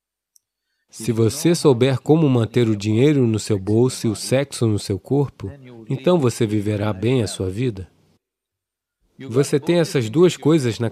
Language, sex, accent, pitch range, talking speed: English, male, Brazilian, 105-135 Hz, 160 wpm